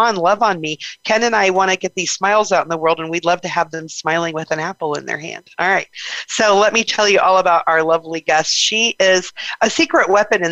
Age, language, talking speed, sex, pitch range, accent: 40-59, English, 270 wpm, female, 175-220 Hz, American